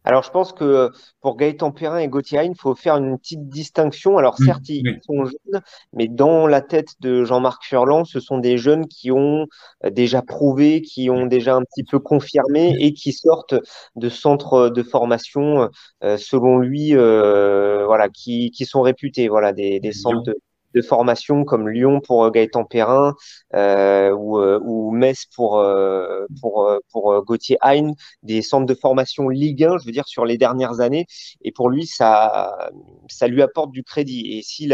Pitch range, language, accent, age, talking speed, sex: 115-145 Hz, French, French, 30-49, 175 wpm, male